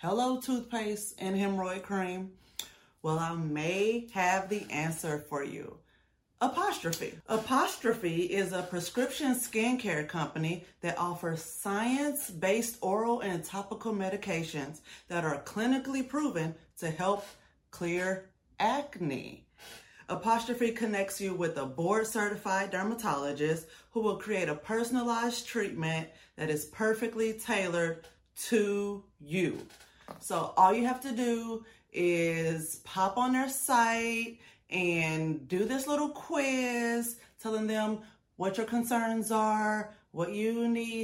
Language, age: English, 30-49